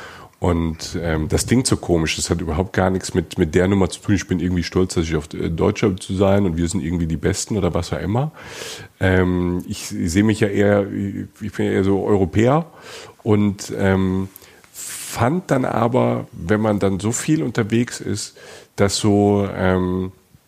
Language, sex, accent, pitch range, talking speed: German, male, German, 90-115 Hz, 190 wpm